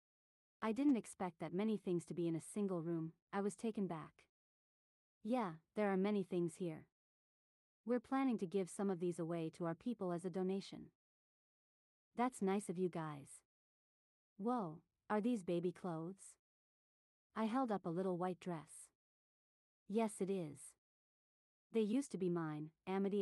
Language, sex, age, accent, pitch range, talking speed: English, female, 40-59, American, 175-215 Hz, 160 wpm